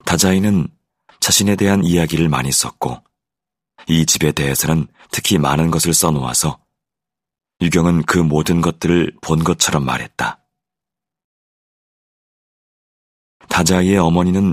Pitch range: 75-90 Hz